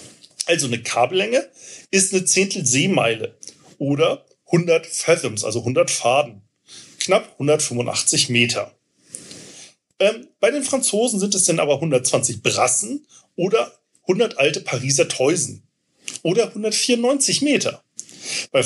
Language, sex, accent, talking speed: German, male, German, 110 wpm